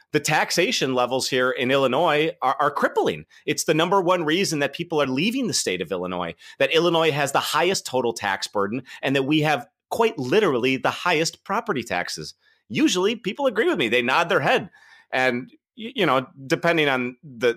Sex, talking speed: male, 190 wpm